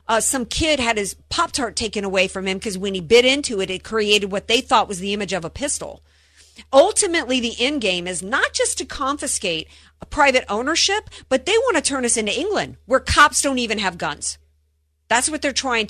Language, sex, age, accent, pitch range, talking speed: English, female, 50-69, American, 175-260 Hz, 215 wpm